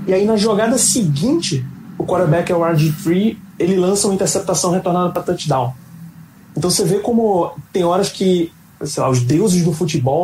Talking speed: 175 wpm